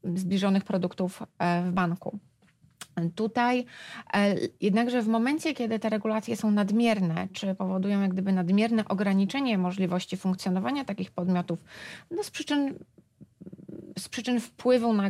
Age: 30-49